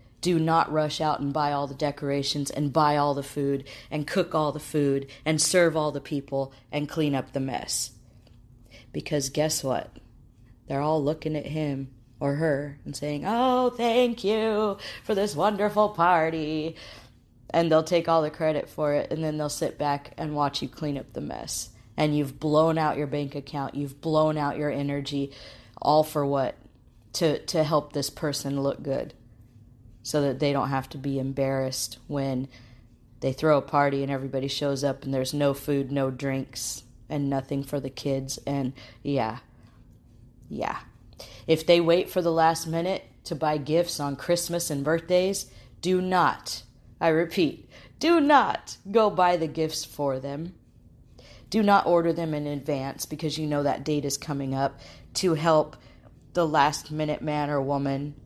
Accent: American